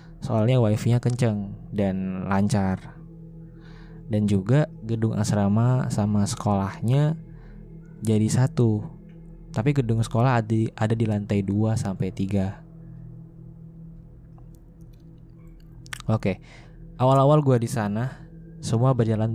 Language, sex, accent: Indonesian, male, native